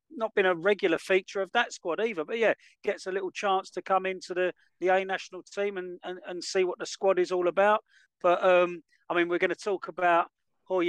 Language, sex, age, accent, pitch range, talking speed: English, male, 40-59, British, 170-200 Hz, 235 wpm